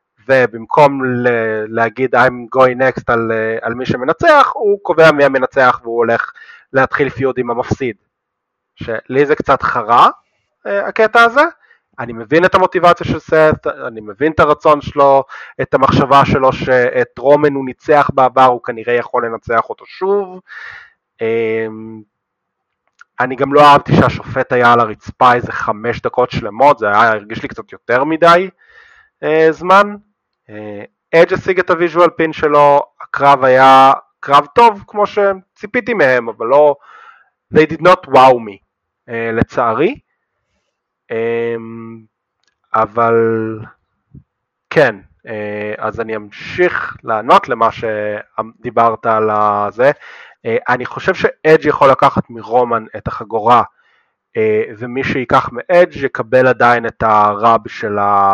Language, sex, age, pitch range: Hebrew, male, 20-39, 115-160 Hz